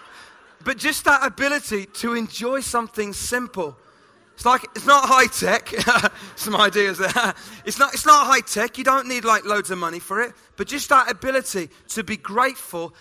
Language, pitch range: English, 180-230 Hz